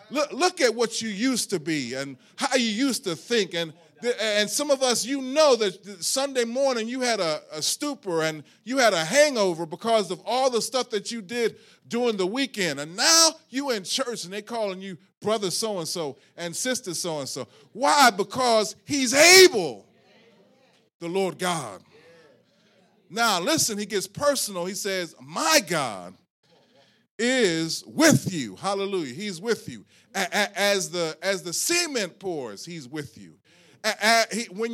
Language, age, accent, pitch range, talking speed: English, 30-49, American, 180-250 Hz, 160 wpm